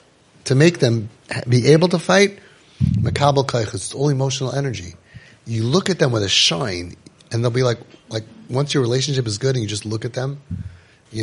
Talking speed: 190 wpm